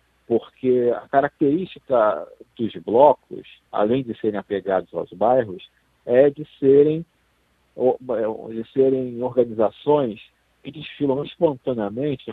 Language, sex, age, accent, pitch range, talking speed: Portuguese, male, 50-69, Brazilian, 110-145 Hz, 95 wpm